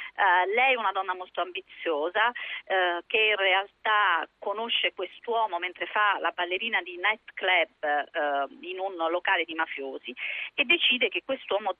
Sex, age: female, 40-59